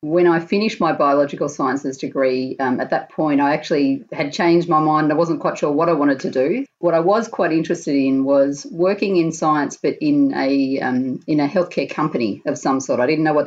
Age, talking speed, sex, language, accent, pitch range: 30-49, 225 wpm, female, English, Australian, 140-175 Hz